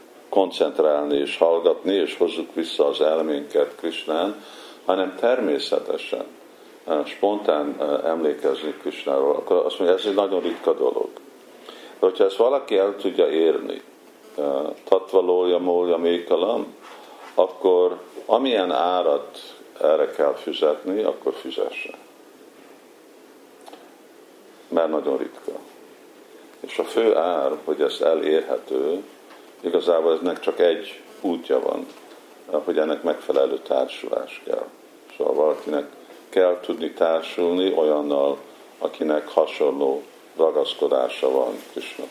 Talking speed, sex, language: 105 wpm, male, Hungarian